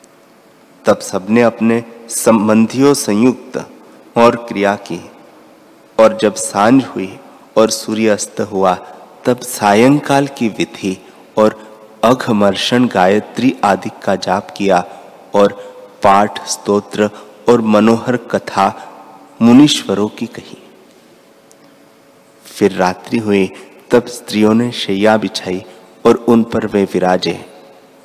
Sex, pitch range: male, 95-120 Hz